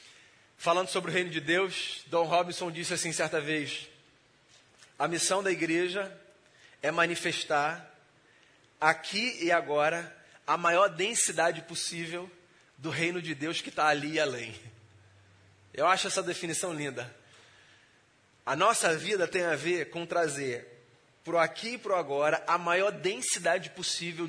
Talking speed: 140 wpm